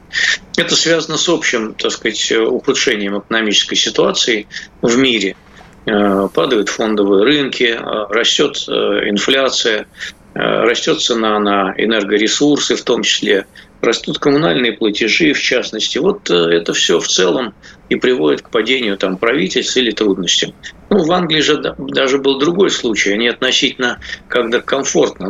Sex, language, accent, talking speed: male, Russian, native, 125 wpm